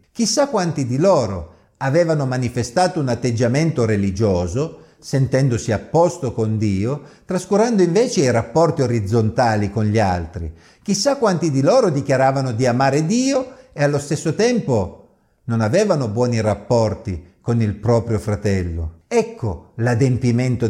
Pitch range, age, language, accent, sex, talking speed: 110-160 Hz, 50-69, Italian, native, male, 130 wpm